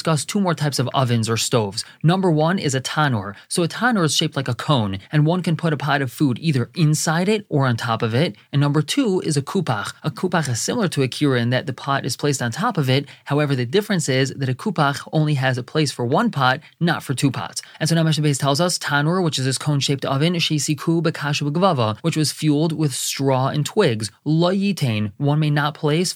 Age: 20-39